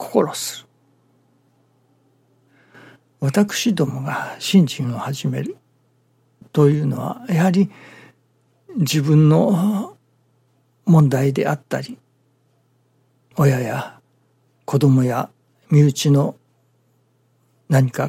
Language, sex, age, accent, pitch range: Japanese, male, 60-79, native, 130-160 Hz